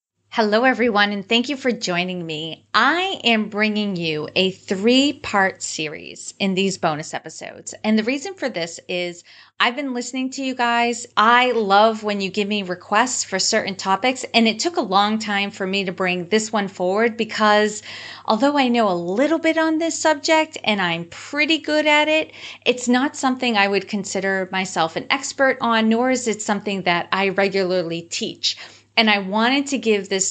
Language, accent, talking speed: English, American, 185 wpm